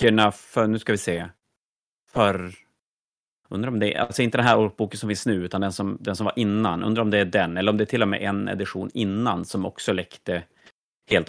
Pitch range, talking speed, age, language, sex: 95-110 Hz, 235 wpm, 30-49, Swedish, male